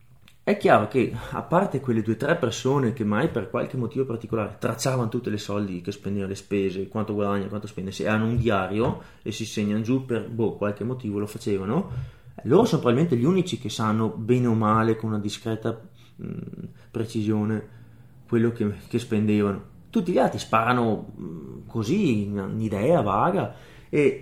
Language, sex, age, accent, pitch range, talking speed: Italian, male, 30-49, native, 105-125 Hz, 180 wpm